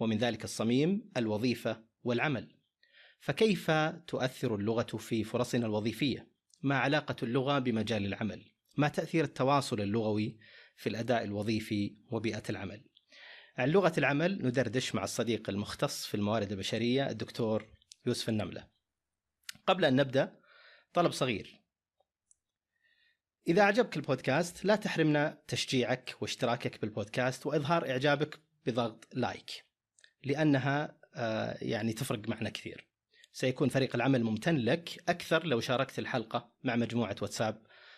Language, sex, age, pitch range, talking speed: Arabic, male, 30-49, 110-145 Hz, 115 wpm